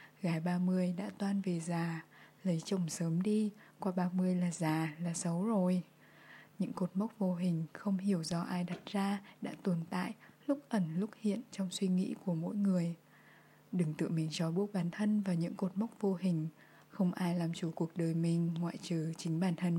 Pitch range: 170-200 Hz